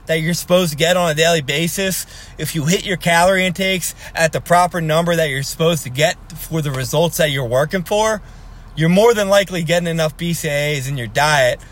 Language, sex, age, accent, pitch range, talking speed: English, male, 20-39, American, 145-185 Hz, 205 wpm